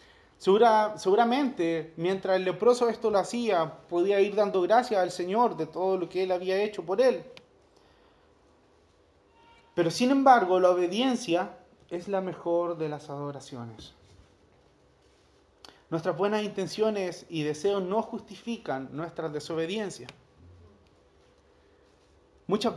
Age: 30-49